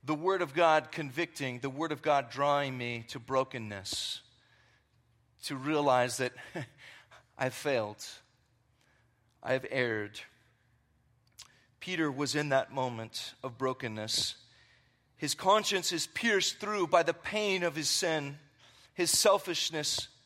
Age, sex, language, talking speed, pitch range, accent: 40-59, male, English, 120 wpm, 125-185 Hz, American